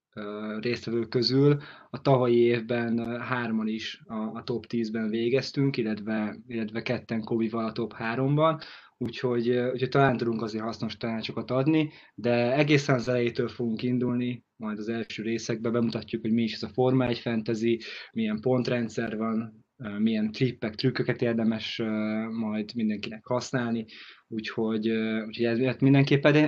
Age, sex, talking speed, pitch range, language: 20-39, male, 130 wpm, 110-130 Hz, Hungarian